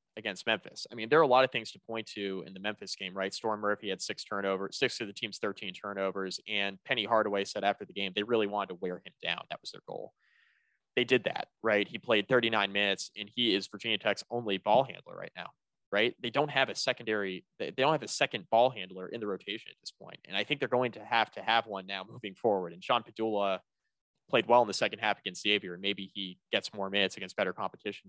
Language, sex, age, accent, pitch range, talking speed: English, male, 20-39, American, 95-120 Hz, 250 wpm